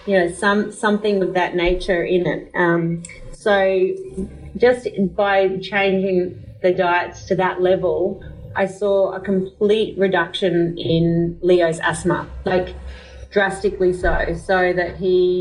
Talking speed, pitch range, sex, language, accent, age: 130 wpm, 175-195 Hz, female, English, Australian, 30-49